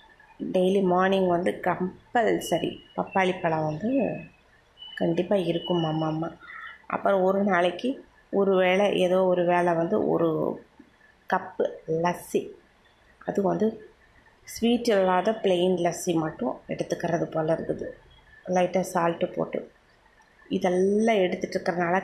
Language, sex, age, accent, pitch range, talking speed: Tamil, female, 20-39, native, 170-200 Hz, 105 wpm